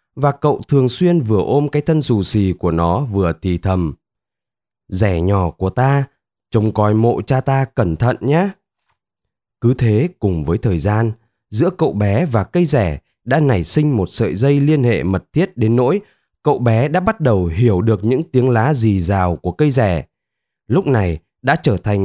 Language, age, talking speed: Vietnamese, 20-39, 195 wpm